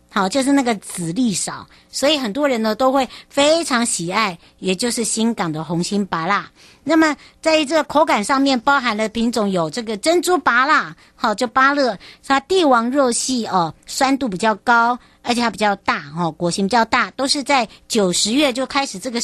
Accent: American